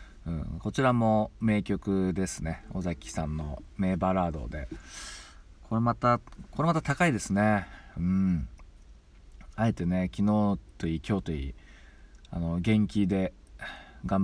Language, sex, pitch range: Japanese, male, 75-100 Hz